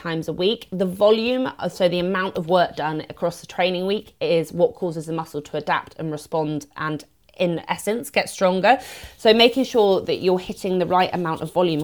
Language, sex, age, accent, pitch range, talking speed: English, female, 30-49, British, 175-210 Hz, 205 wpm